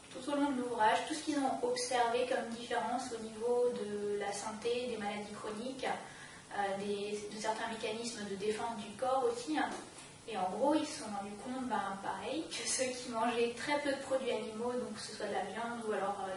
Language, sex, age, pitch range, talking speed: French, female, 20-39, 210-260 Hz, 215 wpm